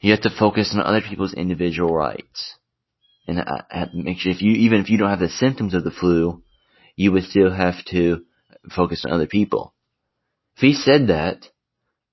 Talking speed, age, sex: 200 wpm, 30-49, male